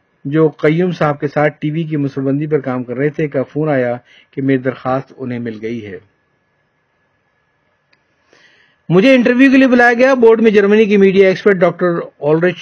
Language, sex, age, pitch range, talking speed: Urdu, male, 50-69, 145-190 Hz, 175 wpm